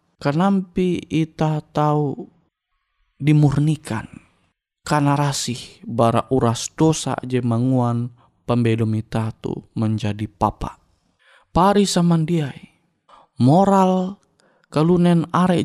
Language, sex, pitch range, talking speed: Indonesian, male, 135-175 Hz, 80 wpm